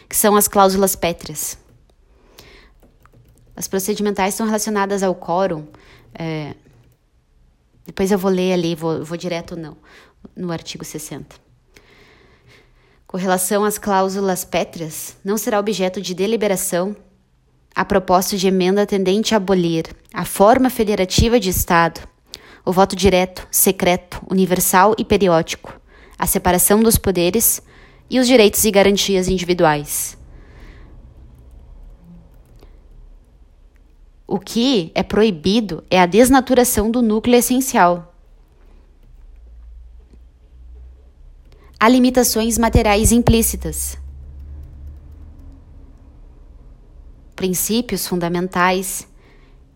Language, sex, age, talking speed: Portuguese, female, 20-39, 95 wpm